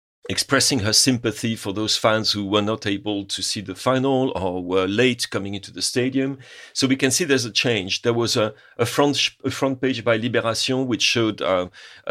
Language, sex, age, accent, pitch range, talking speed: English, male, 40-59, French, 105-130 Hz, 195 wpm